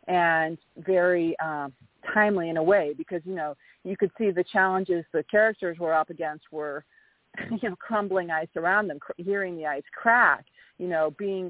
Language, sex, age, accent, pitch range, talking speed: English, female, 40-59, American, 160-200 Hz, 185 wpm